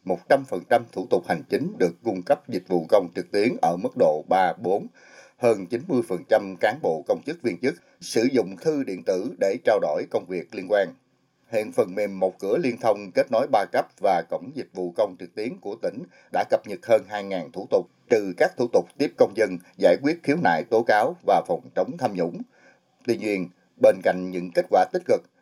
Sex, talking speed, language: male, 215 wpm, Vietnamese